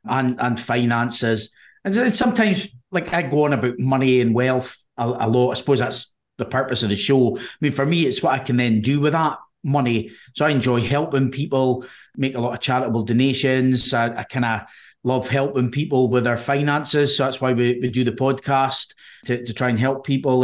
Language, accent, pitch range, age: English, British, 125-140 Hz, 30-49